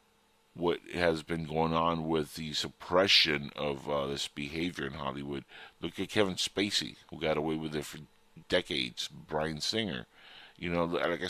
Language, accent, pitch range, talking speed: English, American, 80-105 Hz, 160 wpm